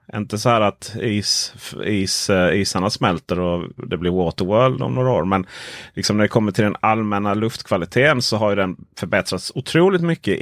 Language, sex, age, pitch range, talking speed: Swedish, male, 30-49, 90-120 Hz, 180 wpm